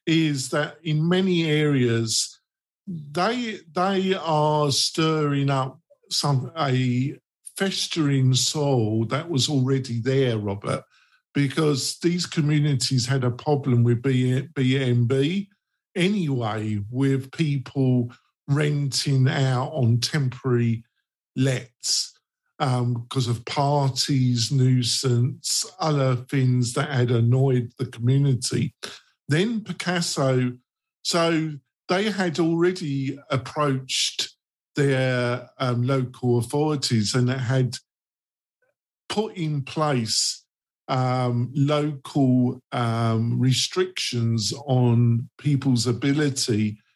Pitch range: 125-150 Hz